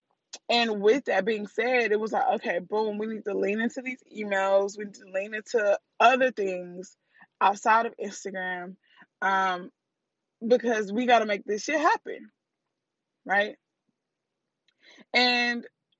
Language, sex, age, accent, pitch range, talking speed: English, female, 20-39, American, 210-265 Hz, 145 wpm